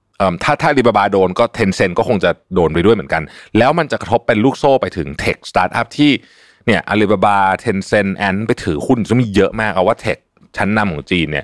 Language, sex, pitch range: Thai, male, 80-105 Hz